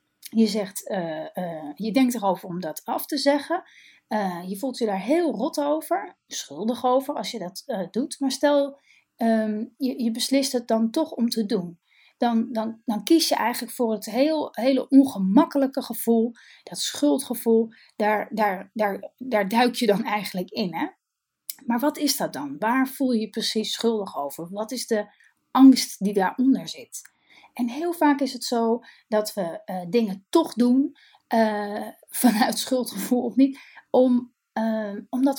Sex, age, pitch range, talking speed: female, 30-49, 210-265 Hz, 160 wpm